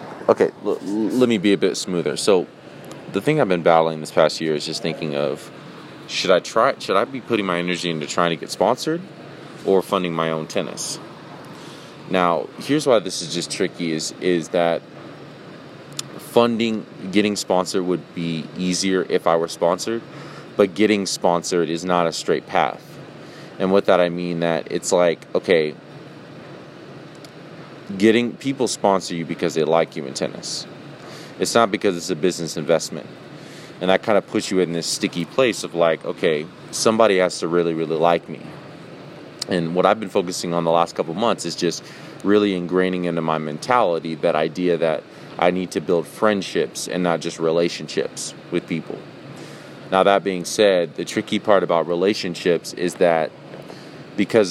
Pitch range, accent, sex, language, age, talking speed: 85-100 Hz, American, male, English, 20-39, 175 wpm